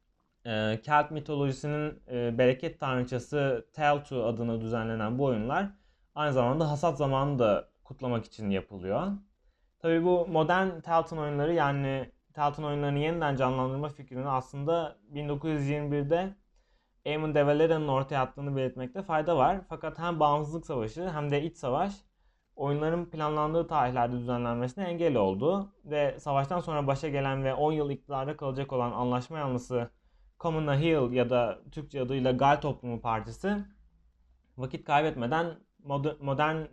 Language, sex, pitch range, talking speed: Turkish, male, 125-165 Hz, 125 wpm